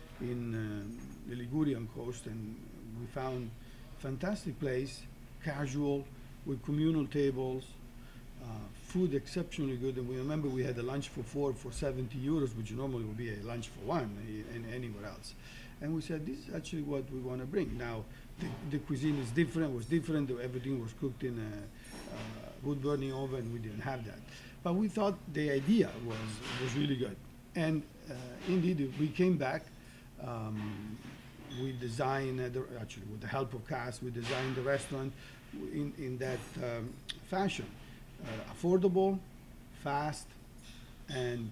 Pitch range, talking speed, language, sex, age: 120-140 Hz, 160 wpm, English, male, 50-69